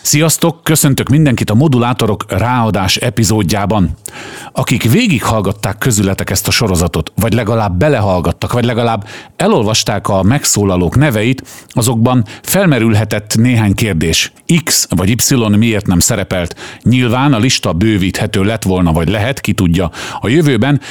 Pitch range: 95-125 Hz